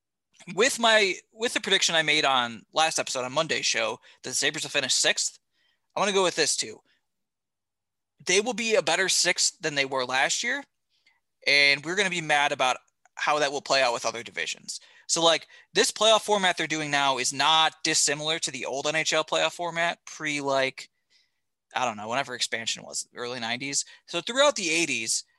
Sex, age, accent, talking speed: male, 20-39, American, 195 wpm